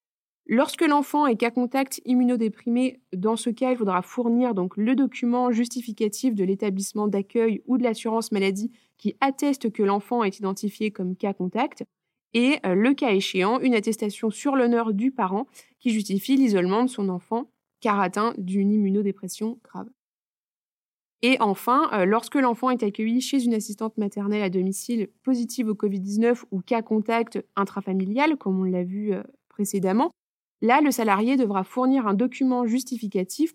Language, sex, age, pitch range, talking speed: French, female, 20-39, 200-255 Hz, 150 wpm